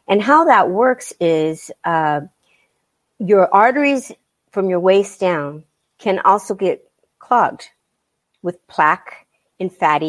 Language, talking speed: English, 120 wpm